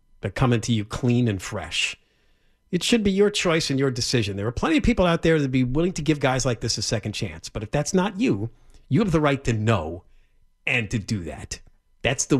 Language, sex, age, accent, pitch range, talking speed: English, male, 50-69, American, 110-170 Hz, 235 wpm